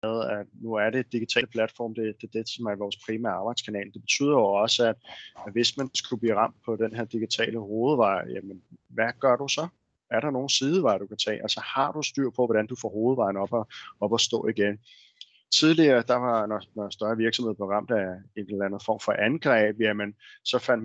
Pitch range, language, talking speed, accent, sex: 105-125 Hz, Danish, 215 wpm, native, male